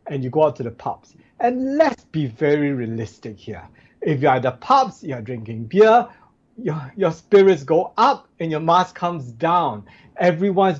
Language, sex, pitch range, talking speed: English, male, 135-190 Hz, 180 wpm